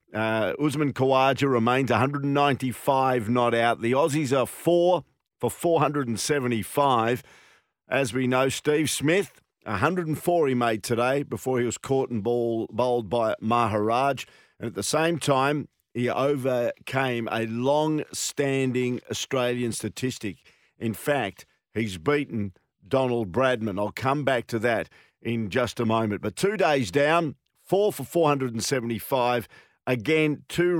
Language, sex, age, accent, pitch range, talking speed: English, male, 50-69, Australian, 115-140 Hz, 130 wpm